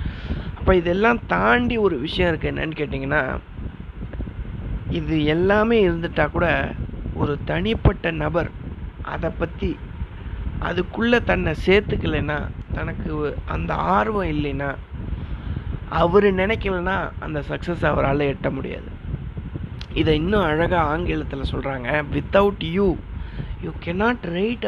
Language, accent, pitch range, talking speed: Tamil, native, 130-200 Hz, 100 wpm